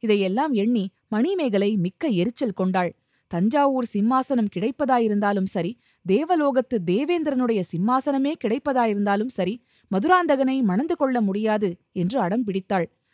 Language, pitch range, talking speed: Tamil, 195-270 Hz, 95 wpm